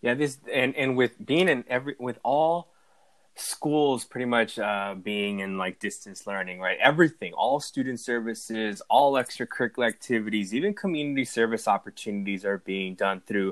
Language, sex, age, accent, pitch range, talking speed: English, male, 20-39, American, 105-130 Hz, 155 wpm